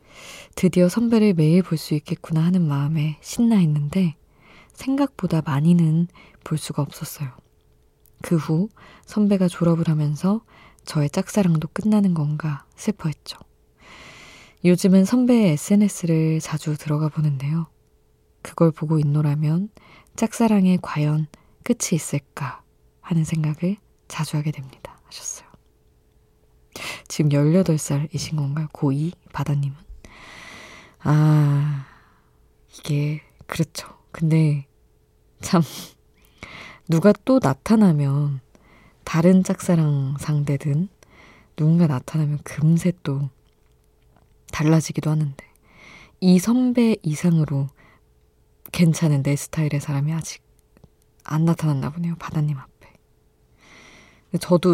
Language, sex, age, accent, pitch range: Korean, female, 20-39, native, 145-175 Hz